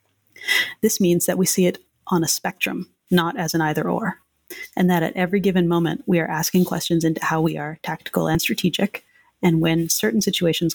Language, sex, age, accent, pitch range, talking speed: English, female, 30-49, American, 170-200 Hz, 195 wpm